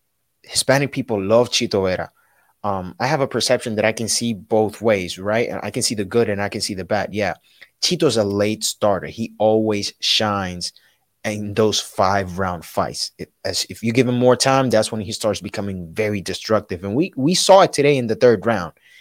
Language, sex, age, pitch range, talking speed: English, male, 30-49, 105-130 Hz, 205 wpm